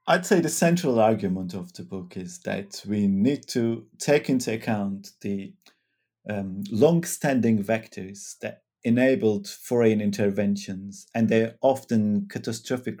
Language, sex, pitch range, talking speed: English, male, 100-130 Hz, 130 wpm